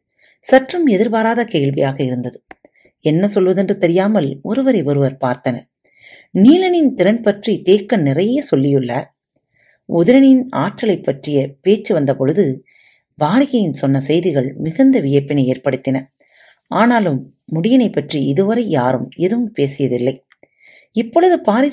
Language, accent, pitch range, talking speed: Tamil, native, 140-230 Hz, 100 wpm